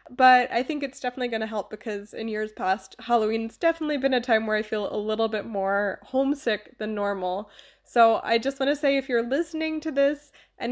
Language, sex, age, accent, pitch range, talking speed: English, female, 20-39, American, 220-275 Hz, 205 wpm